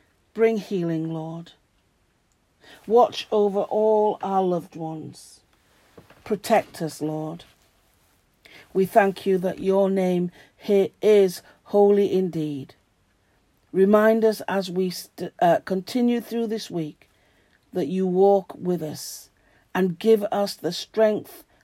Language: English